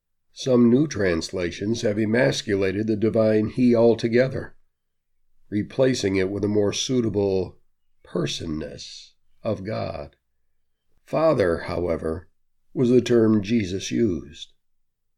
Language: English